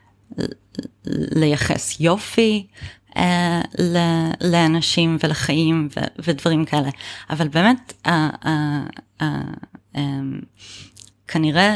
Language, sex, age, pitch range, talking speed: Hebrew, female, 30-49, 140-160 Hz, 80 wpm